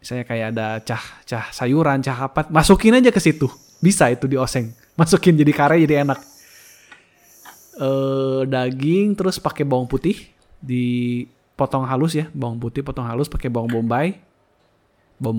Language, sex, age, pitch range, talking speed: Indonesian, male, 20-39, 120-155 Hz, 150 wpm